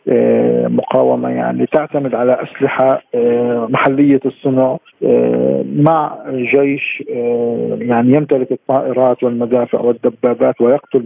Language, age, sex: Arabic, 50-69, male